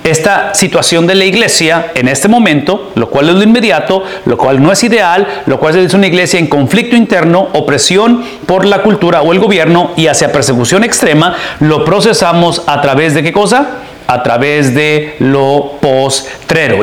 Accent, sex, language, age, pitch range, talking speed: Mexican, male, English, 40-59, 145-200 Hz, 175 wpm